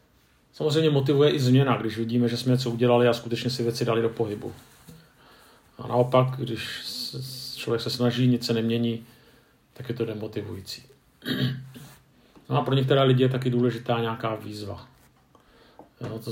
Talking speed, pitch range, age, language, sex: 155 wpm, 115-130 Hz, 40-59, Czech, male